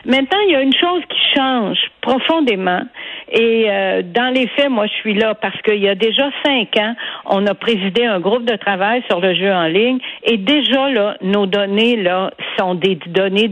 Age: 60-79